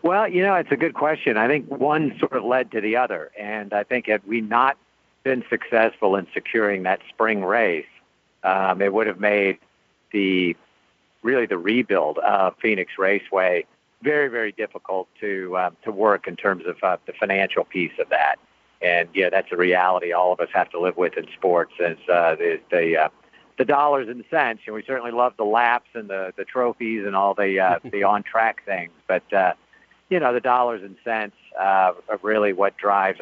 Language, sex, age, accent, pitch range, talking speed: English, male, 50-69, American, 95-135 Hz, 200 wpm